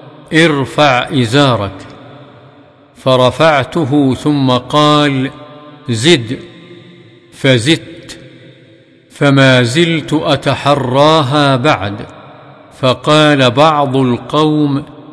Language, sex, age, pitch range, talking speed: Arabic, male, 50-69, 130-150 Hz, 55 wpm